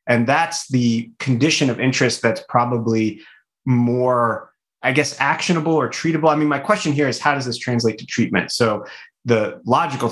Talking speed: 170 wpm